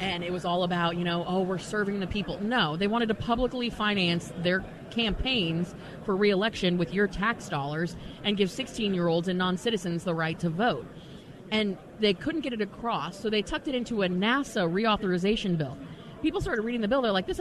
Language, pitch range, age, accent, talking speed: English, 170-215 Hz, 30-49, American, 200 wpm